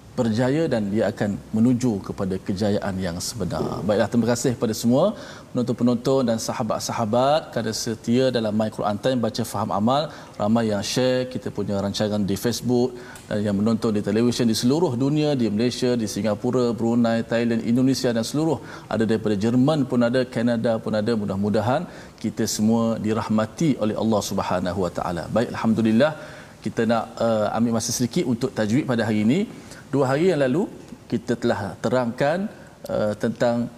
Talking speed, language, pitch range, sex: 160 wpm, Malayalam, 110-130 Hz, male